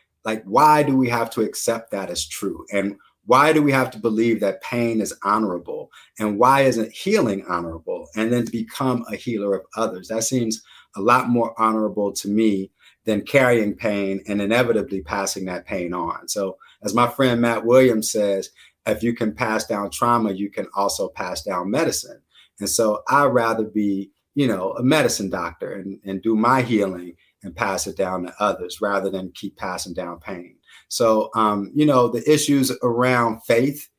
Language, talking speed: English, 185 wpm